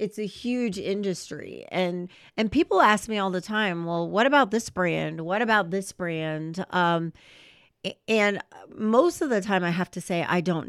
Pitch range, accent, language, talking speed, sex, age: 170-210 Hz, American, English, 185 wpm, female, 40-59